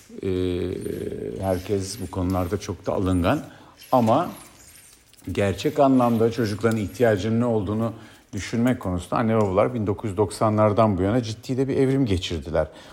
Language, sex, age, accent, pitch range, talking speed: Turkish, male, 50-69, native, 95-125 Hz, 120 wpm